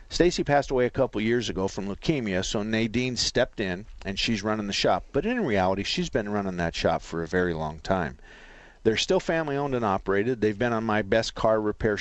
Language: English